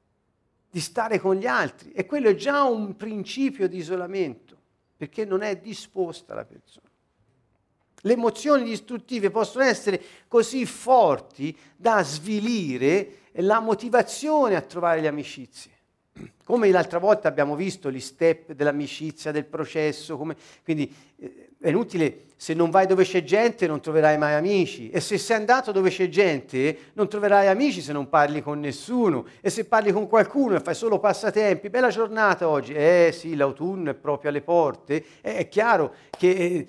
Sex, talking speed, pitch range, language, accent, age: male, 155 wpm, 145-220 Hz, Italian, native, 50-69